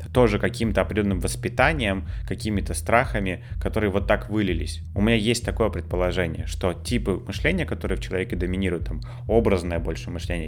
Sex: male